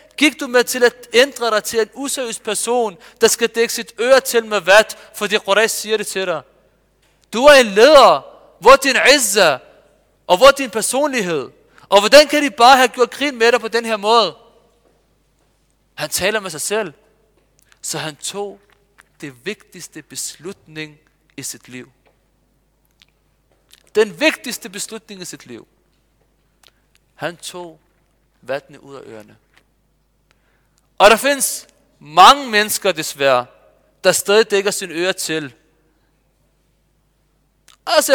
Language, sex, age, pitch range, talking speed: Danish, male, 40-59, 175-240 Hz, 140 wpm